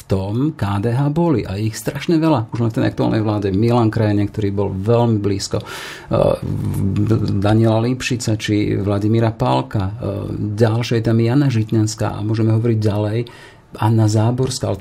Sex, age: male, 40-59